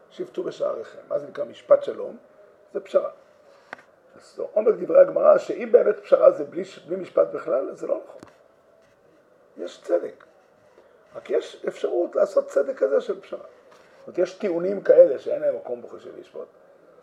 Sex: male